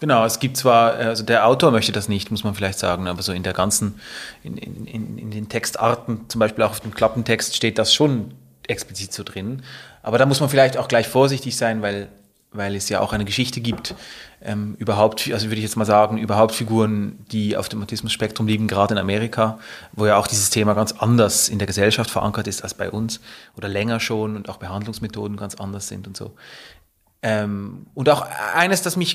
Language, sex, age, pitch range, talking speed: German, male, 30-49, 105-120 Hz, 215 wpm